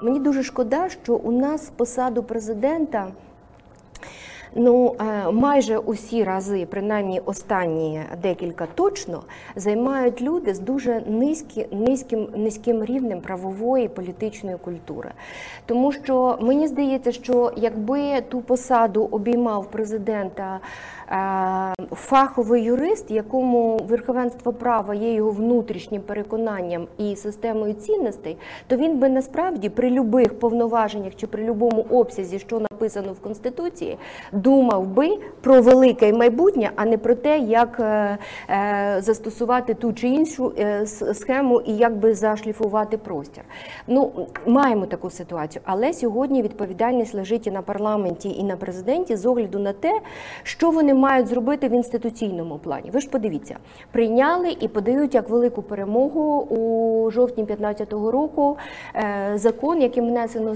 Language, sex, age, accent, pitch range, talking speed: Ukrainian, female, 30-49, native, 210-255 Hz, 125 wpm